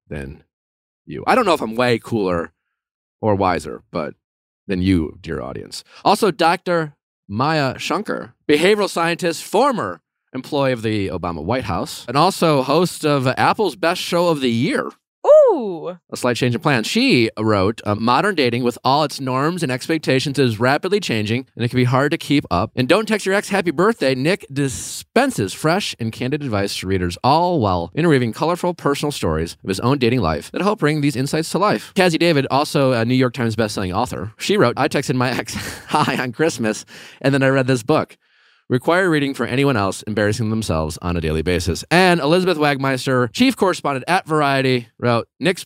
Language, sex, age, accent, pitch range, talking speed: English, male, 30-49, American, 105-155 Hz, 190 wpm